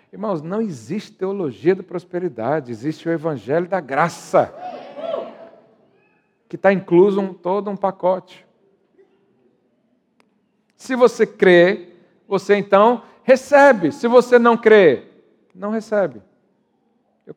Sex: male